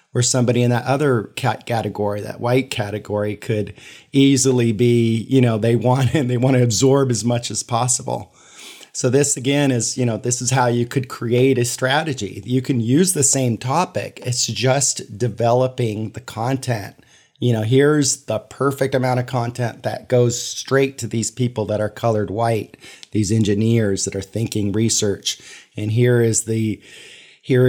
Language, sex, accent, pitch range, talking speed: English, male, American, 110-125 Hz, 175 wpm